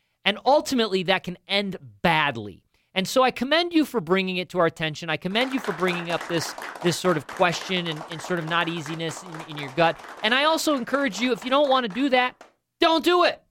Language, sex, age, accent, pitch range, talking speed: English, male, 40-59, American, 170-235 Hz, 235 wpm